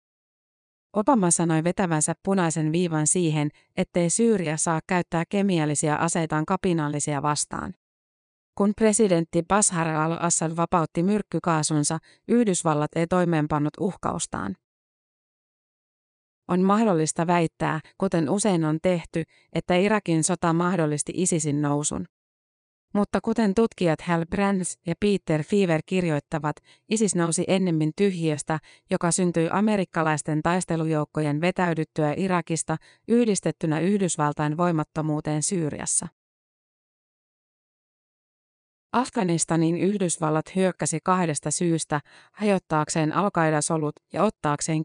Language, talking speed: Finnish, 95 wpm